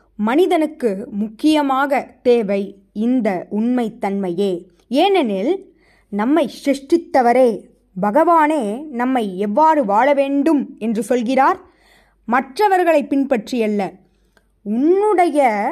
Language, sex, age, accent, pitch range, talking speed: Tamil, female, 20-39, native, 215-310 Hz, 70 wpm